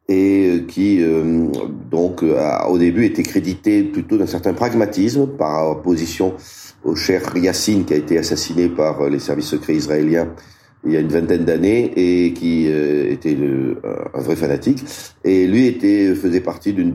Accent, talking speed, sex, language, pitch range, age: French, 165 wpm, male, French, 80-105 Hz, 40-59